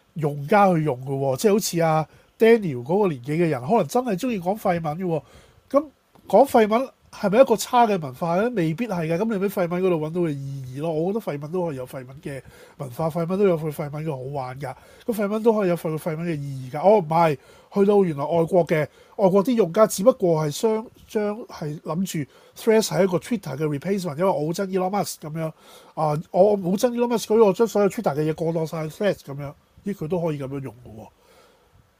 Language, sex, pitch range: Chinese, male, 150-205 Hz